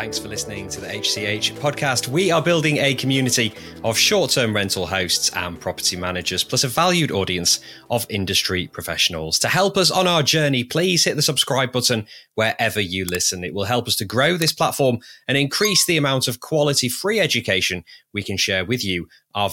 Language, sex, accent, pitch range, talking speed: English, male, British, 95-150 Hz, 190 wpm